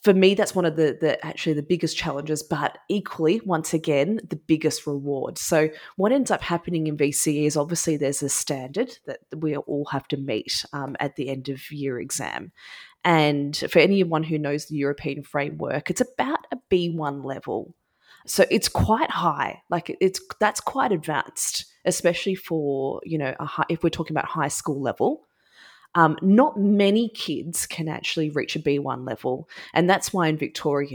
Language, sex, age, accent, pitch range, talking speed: English, female, 20-39, Australian, 145-170 Hz, 180 wpm